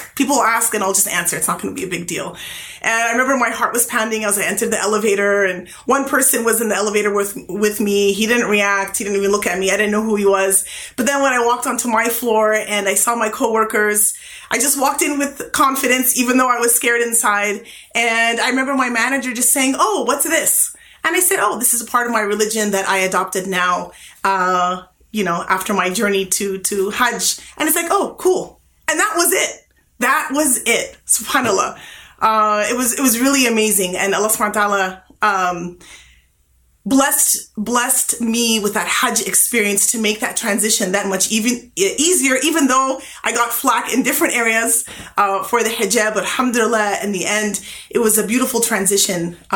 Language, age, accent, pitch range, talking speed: English, 30-49, American, 195-245 Hz, 205 wpm